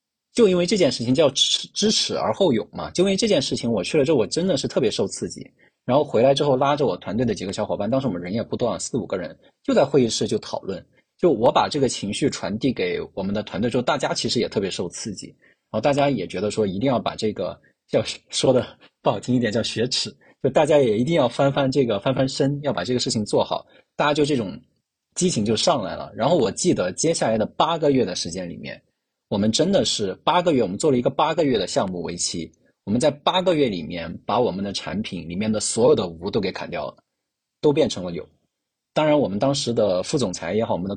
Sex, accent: male, native